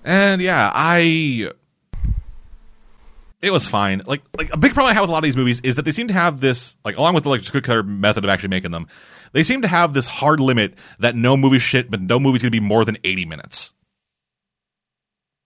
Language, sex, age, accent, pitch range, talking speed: English, male, 30-49, American, 100-135 Hz, 225 wpm